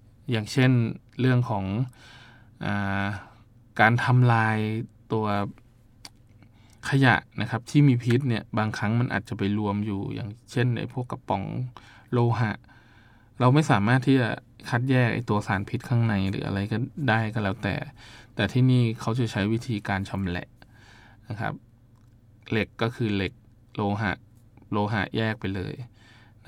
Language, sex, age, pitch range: Thai, male, 20-39, 105-120 Hz